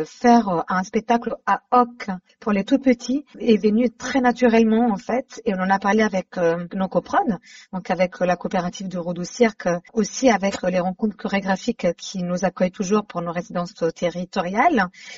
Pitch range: 190-245 Hz